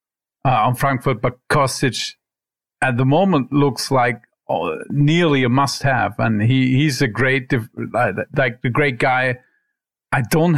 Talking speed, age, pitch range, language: 140 wpm, 50-69, 120-145 Hz, English